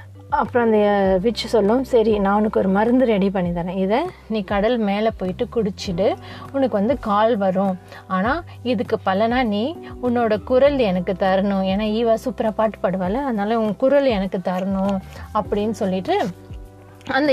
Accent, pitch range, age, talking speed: native, 195-240 Hz, 30-49, 150 wpm